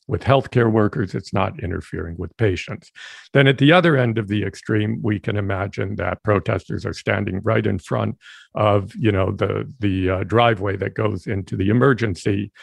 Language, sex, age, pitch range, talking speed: English, male, 50-69, 100-120 Hz, 180 wpm